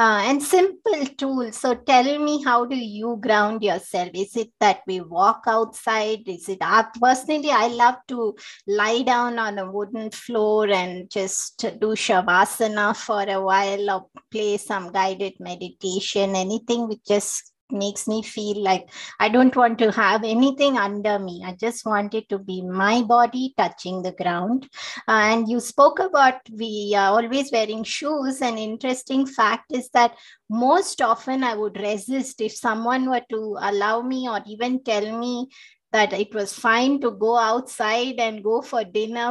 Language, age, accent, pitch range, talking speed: English, 20-39, Indian, 205-250 Hz, 165 wpm